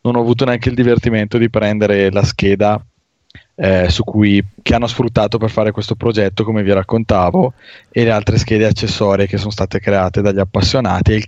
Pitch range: 100-115 Hz